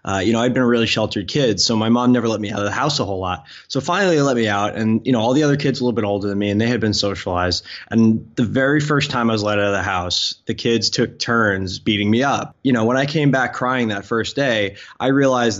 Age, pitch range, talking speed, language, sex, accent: 20-39, 100-120 Hz, 295 wpm, English, male, American